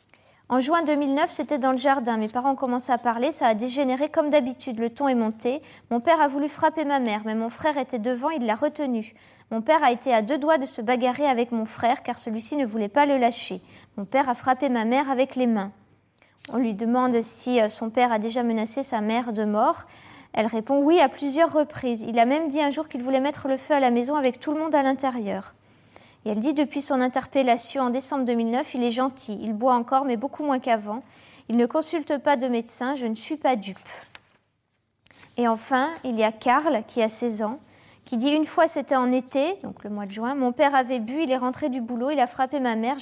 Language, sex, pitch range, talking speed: French, female, 235-290 Hz, 240 wpm